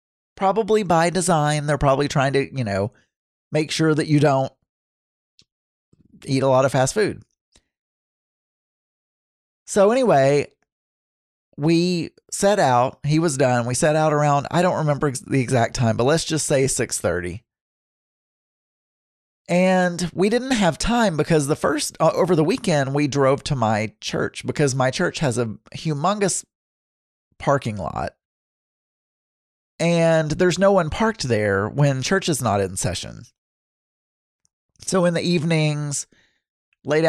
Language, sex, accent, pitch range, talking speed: English, male, American, 120-165 Hz, 135 wpm